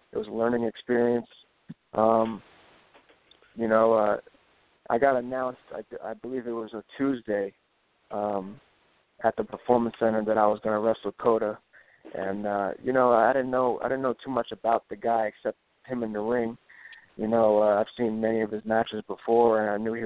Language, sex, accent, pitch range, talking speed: English, male, American, 110-120 Hz, 195 wpm